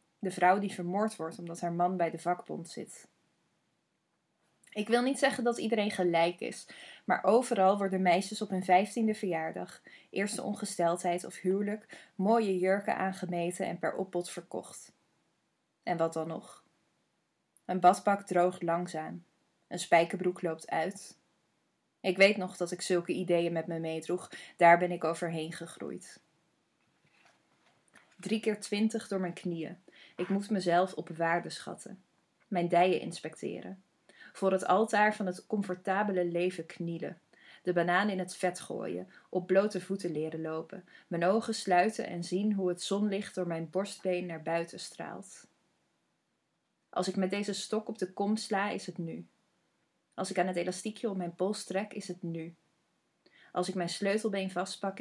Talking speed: 155 wpm